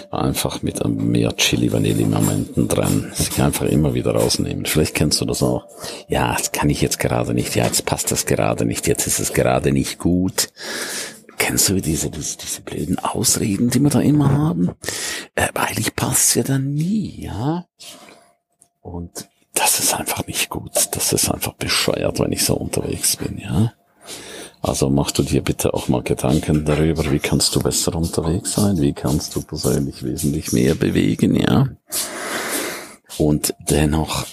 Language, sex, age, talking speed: German, male, 50-69, 165 wpm